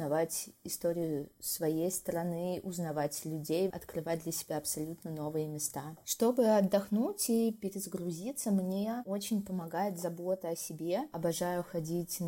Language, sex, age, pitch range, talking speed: Russian, female, 20-39, 160-190 Hz, 115 wpm